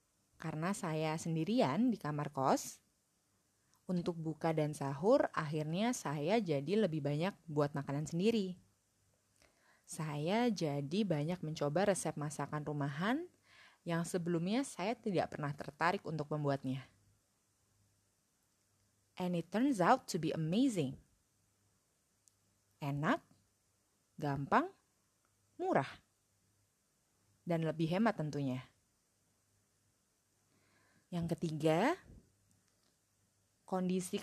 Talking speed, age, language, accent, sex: 90 wpm, 20-39, Indonesian, native, female